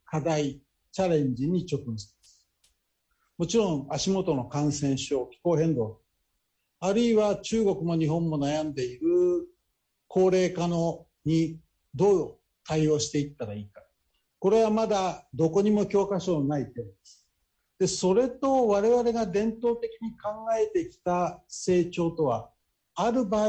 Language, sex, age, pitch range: Japanese, male, 60-79, 150-215 Hz